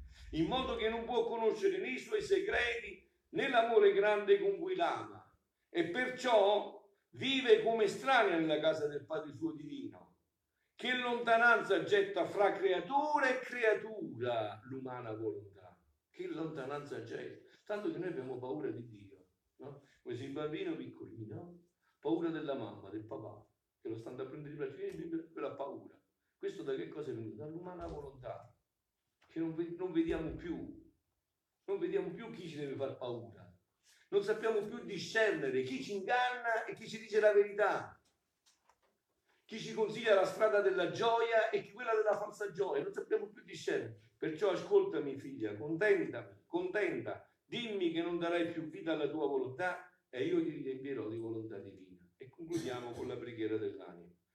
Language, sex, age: Italian, male, 50-69